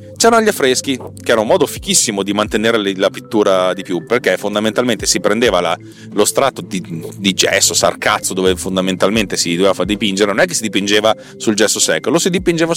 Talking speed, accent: 195 wpm, native